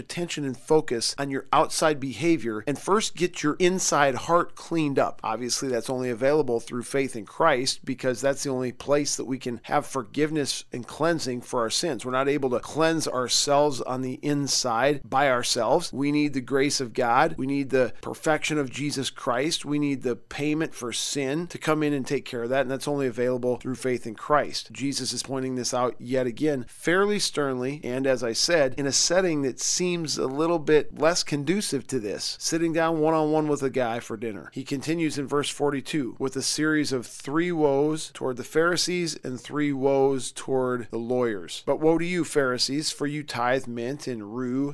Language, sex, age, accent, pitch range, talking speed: English, male, 40-59, American, 130-155 Hz, 200 wpm